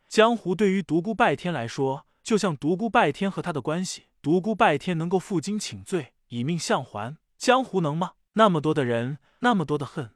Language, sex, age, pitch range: Chinese, male, 20-39, 145-205 Hz